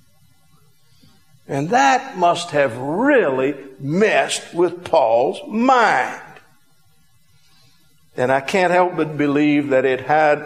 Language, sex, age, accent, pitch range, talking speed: English, male, 50-69, American, 140-185 Hz, 105 wpm